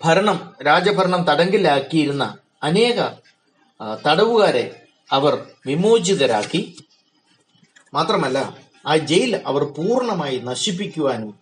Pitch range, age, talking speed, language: 140-195 Hz, 30-49, 70 wpm, Malayalam